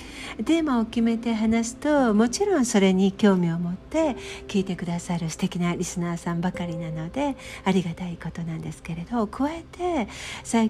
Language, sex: Japanese, female